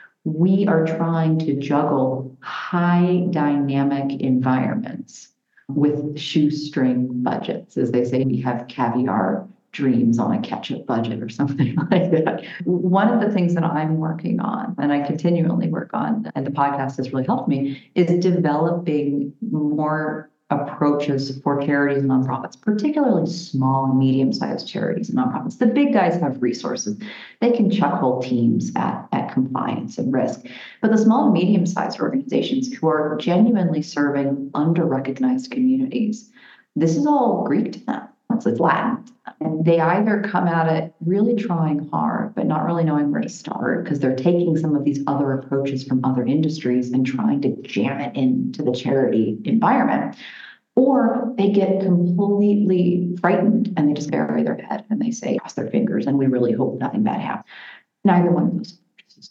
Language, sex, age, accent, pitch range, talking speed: English, female, 40-59, American, 140-210 Hz, 165 wpm